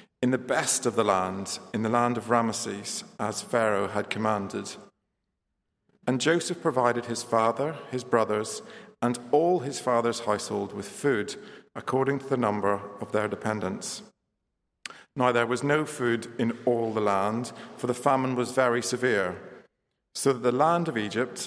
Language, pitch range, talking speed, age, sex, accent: English, 105-135 Hz, 160 wpm, 40-59, male, British